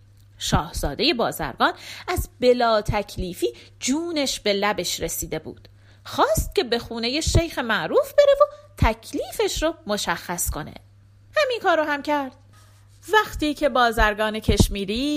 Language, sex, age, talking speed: Persian, female, 30-49, 125 wpm